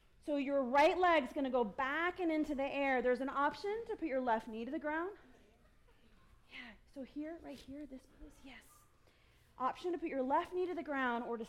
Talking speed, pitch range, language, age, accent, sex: 220 wpm, 255-320 Hz, English, 30-49, American, female